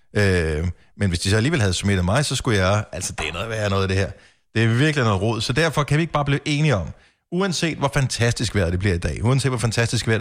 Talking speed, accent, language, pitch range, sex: 275 wpm, native, Danish, 105-145 Hz, male